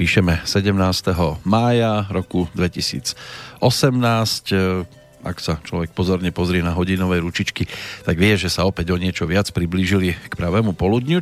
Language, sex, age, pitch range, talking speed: Slovak, male, 40-59, 90-110 Hz, 135 wpm